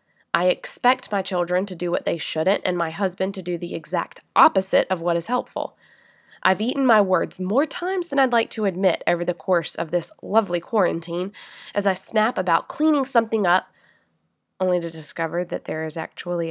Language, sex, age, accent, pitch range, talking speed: English, female, 20-39, American, 170-210 Hz, 195 wpm